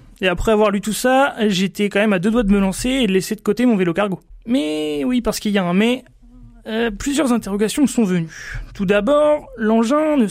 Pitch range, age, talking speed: 185-225 Hz, 30-49, 235 wpm